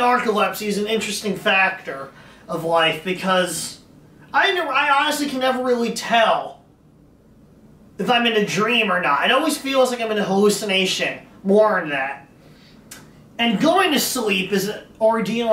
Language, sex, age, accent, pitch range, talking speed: English, male, 30-49, American, 170-225 Hz, 160 wpm